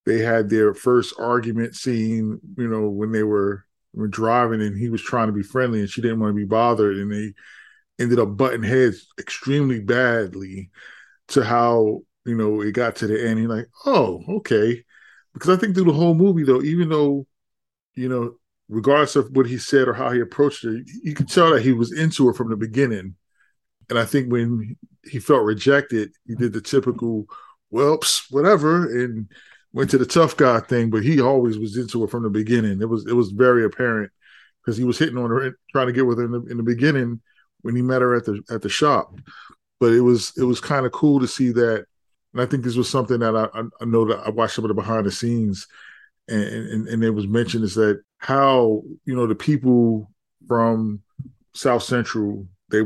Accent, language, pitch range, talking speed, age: American, English, 110-130 Hz, 215 wpm, 20-39